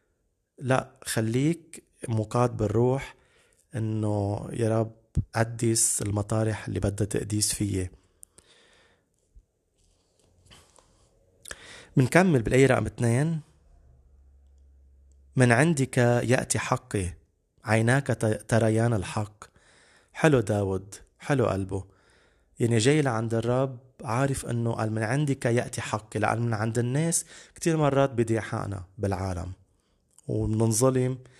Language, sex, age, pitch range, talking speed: Arabic, male, 30-49, 105-130 Hz, 90 wpm